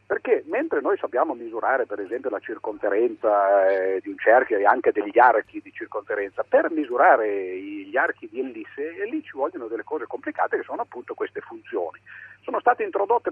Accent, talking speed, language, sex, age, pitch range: native, 175 wpm, Italian, male, 50-69, 310-445 Hz